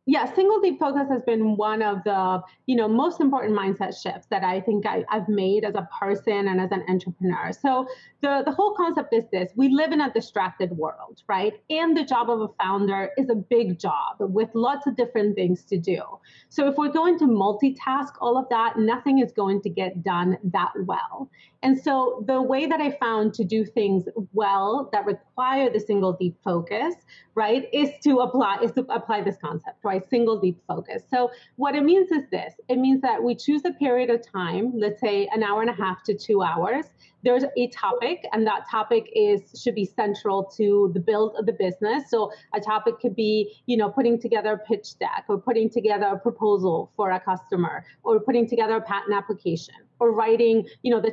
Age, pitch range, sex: 30-49, 200-260 Hz, female